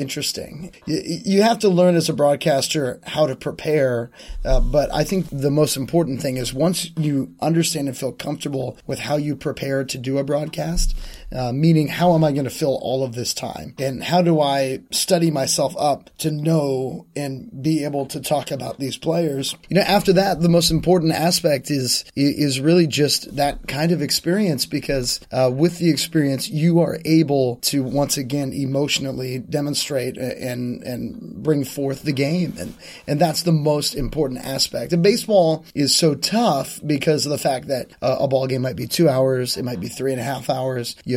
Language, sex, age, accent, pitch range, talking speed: English, male, 30-49, American, 135-165 Hz, 190 wpm